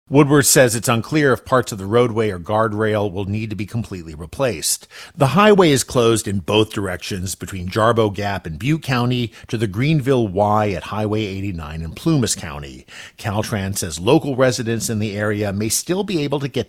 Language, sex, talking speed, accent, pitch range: English, male, 190 wpm, American, 100-125 Hz